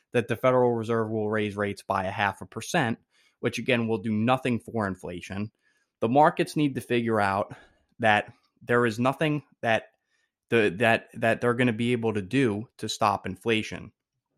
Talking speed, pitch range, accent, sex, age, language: 180 wpm, 105-130 Hz, American, male, 20-39, English